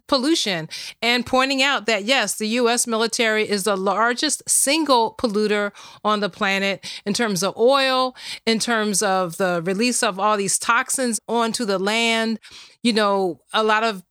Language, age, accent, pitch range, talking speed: English, 30-49, American, 205-240 Hz, 160 wpm